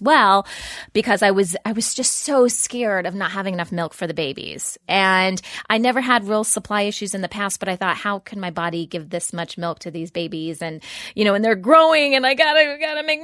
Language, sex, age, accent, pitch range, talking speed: English, female, 20-39, American, 180-225 Hz, 235 wpm